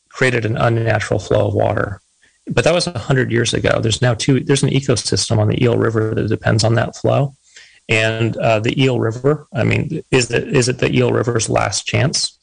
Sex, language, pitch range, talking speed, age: male, English, 110-130 Hz, 210 wpm, 30-49